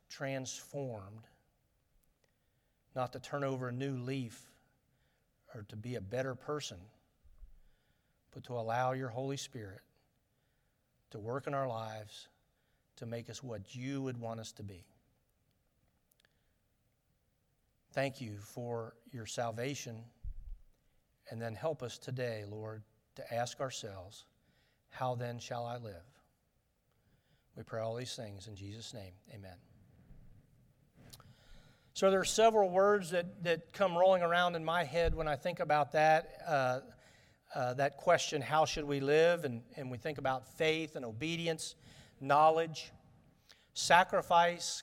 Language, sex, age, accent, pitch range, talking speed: English, male, 40-59, American, 115-160 Hz, 130 wpm